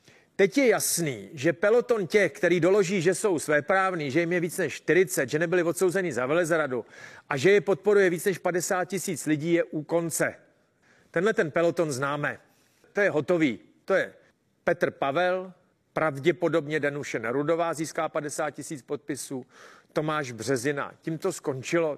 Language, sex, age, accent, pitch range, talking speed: Czech, male, 40-59, native, 150-185 Hz, 155 wpm